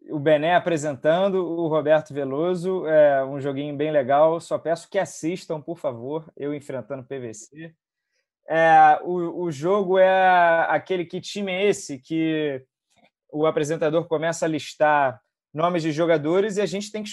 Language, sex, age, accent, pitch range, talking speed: Portuguese, male, 20-39, Brazilian, 140-180 Hz, 150 wpm